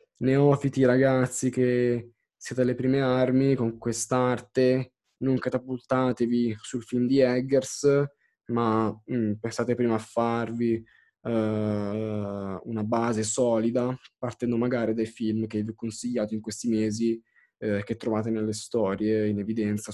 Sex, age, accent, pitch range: male, 20-39, native, 110-130 Hz